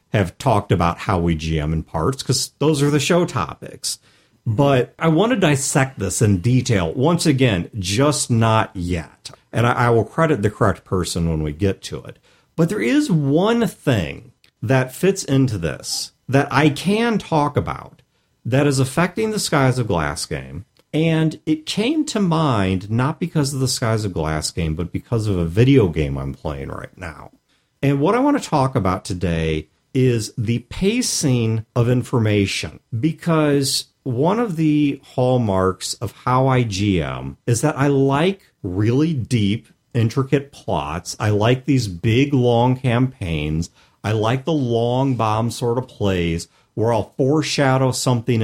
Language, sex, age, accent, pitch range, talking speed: English, male, 50-69, American, 100-145 Hz, 165 wpm